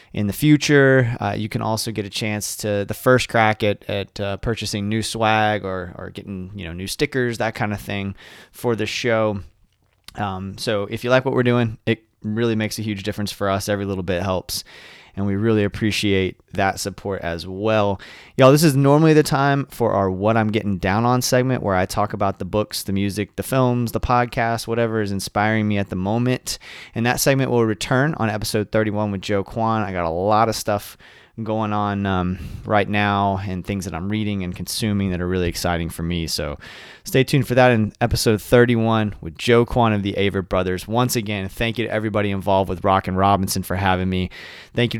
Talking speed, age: 215 wpm, 20-39